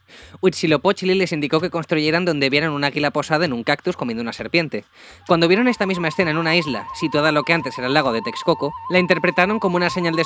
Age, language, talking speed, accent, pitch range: 20-39, Spanish, 235 wpm, Spanish, 140-185 Hz